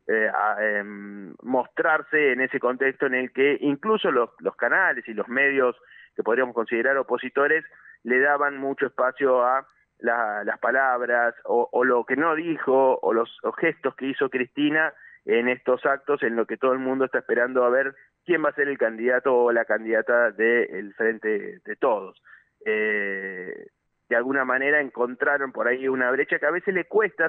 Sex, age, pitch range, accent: male, 20-39, 120-150 Hz, Argentinian